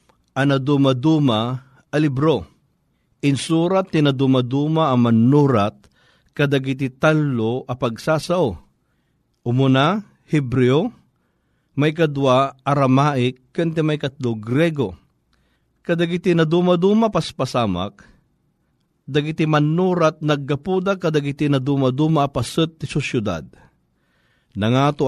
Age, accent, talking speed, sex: 40-59, native, 75 wpm, male